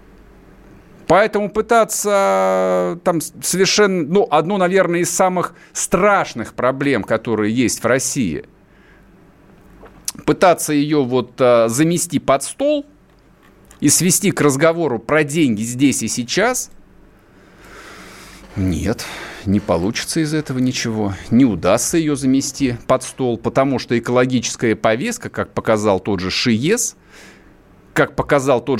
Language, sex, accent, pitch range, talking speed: Russian, male, native, 115-175 Hz, 115 wpm